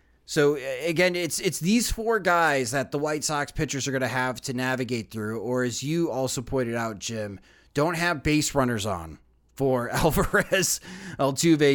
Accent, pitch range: American, 125-150 Hz